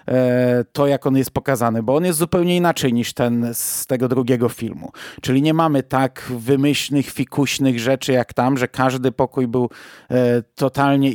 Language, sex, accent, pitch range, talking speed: Polish, male, native, 130-170 Hz, 160 wpm